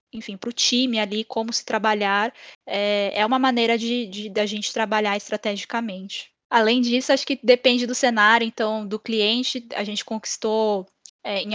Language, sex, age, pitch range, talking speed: Portuguese, female, 10-29, 210-245 Hz, 165 wpm